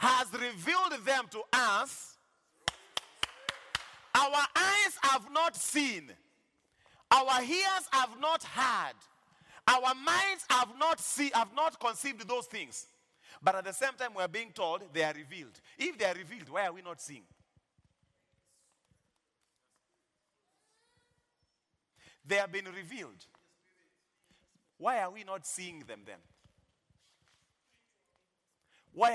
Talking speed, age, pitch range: 120 wpm, 40-59, 200-310 Hz